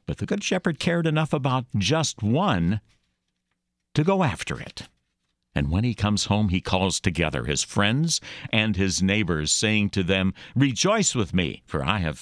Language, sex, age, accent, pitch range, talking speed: English, male, 60-79, American, 90-145 Hz, 170 wpm